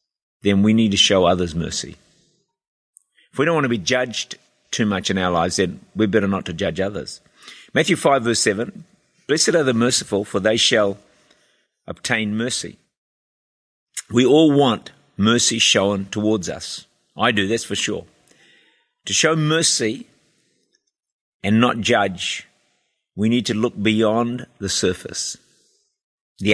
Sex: male